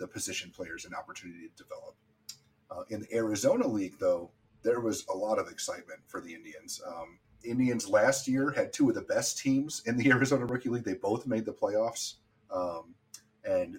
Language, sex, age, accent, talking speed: English, male, 30-49, American, 195 wpm